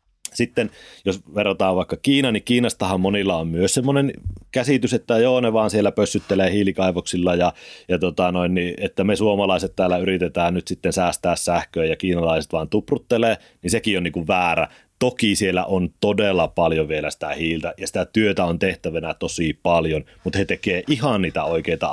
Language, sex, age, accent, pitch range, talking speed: Finnish, male, 30-49, native, 90-110 Hz, 170 wpm